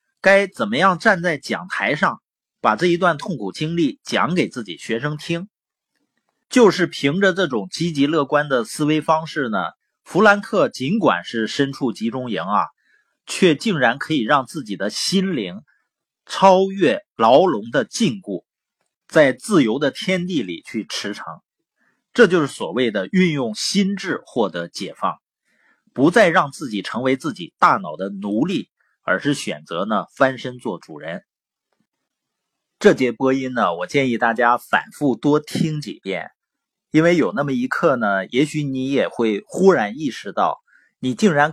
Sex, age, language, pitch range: male, 30-49, Chinese, 130-190 Hz